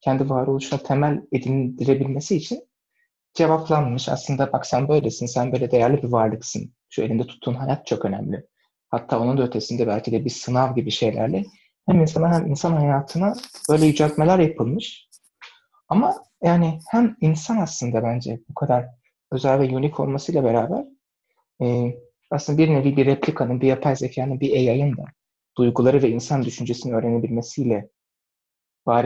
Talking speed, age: 140 wpm, 30-49